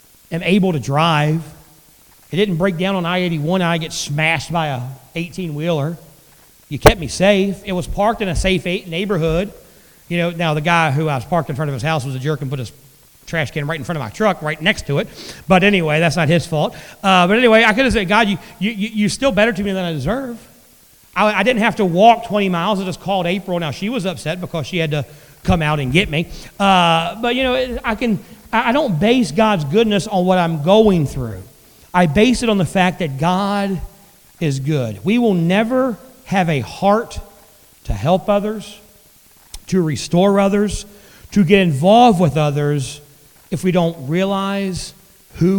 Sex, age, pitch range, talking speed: male, 40-59, 155-205 Hz, 205 wpm